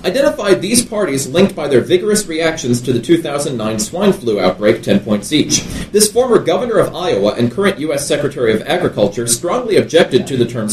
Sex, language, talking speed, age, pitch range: male, English, 185 wpm, 30-49, 125-195 Hz